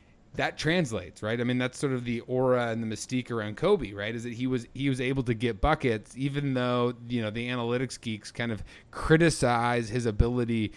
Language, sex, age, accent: English, male, 30-49, American